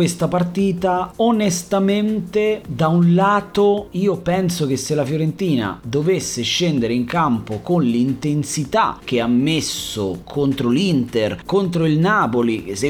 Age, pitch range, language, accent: 30-49, 115-175 Hz, Italian, native